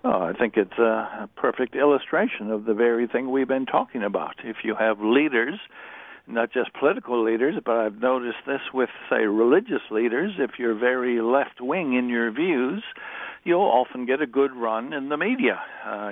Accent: American